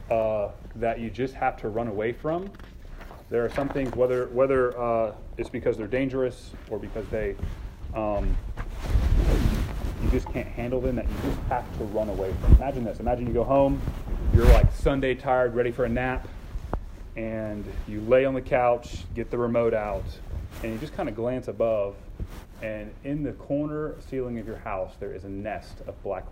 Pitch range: 105-150 Hz